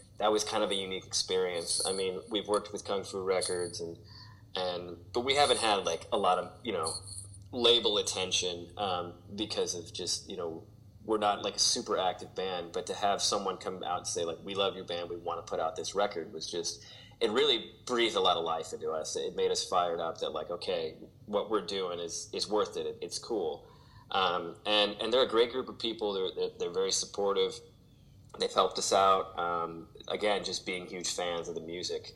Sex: male